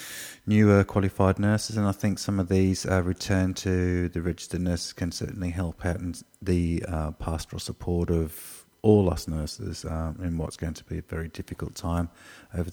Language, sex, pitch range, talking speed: English, male, 85-95 Hz, 185 wpm